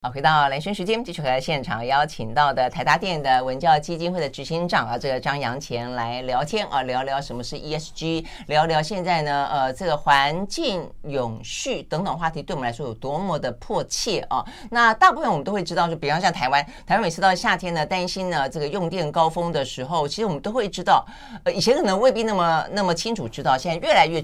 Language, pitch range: Chinese, 140-190 Hz